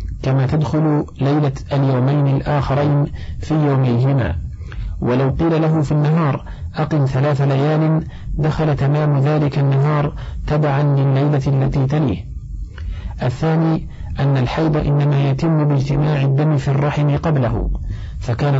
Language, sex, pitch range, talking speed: Arabic, male, 130-150 Hz, 110 wpm